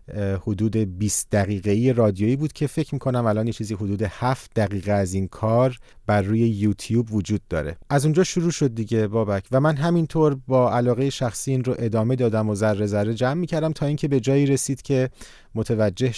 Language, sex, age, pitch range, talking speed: Persian, male, 40-59, 105-125 Hz, 190 wpm